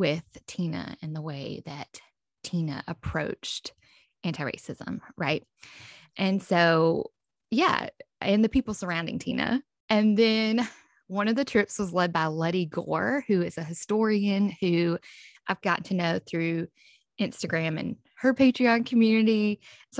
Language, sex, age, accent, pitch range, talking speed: English, female, 10-29, American, 160-215 Hz, 135 wpm